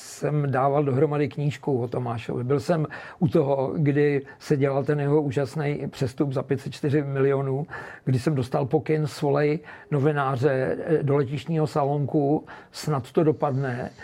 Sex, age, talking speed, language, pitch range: male, 50-69, 135 wpm, Czech, 135-150 Hz